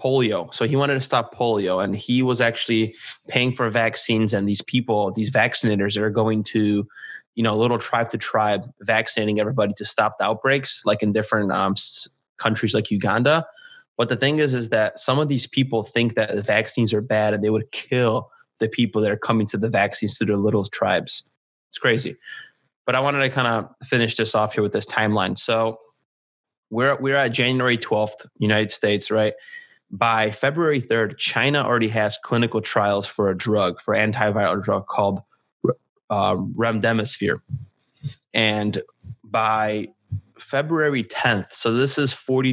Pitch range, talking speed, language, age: 105-125 Hz, 175 wpm, English, 20-39